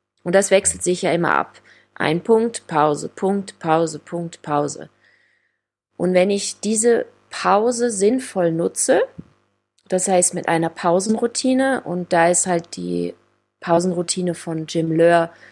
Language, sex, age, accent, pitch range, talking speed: German, female, 30-49, German, 170-220 Hz, 135 wpm